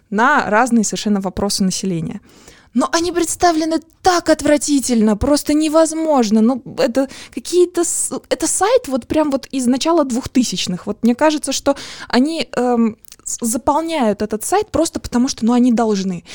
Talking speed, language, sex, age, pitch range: 145 wpm, Russian, female, 20-39, 205-275 Hz